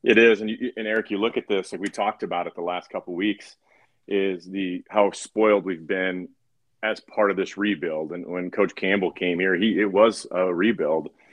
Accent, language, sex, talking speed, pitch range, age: American, English, male, 220 wpm, 85-105 Hz, 30-49